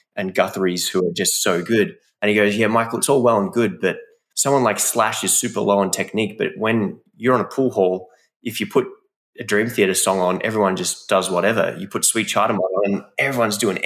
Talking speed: 230 wpm